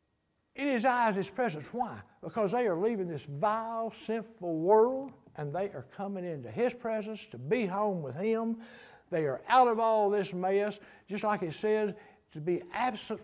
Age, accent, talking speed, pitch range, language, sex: 60-79, American, 180 wpm, 145-210 Hz, English, male